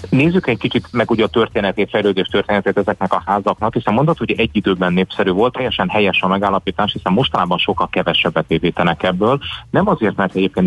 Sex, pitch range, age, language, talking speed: male, 90-105 Hz, 30-49, Hungarian, 185 wpm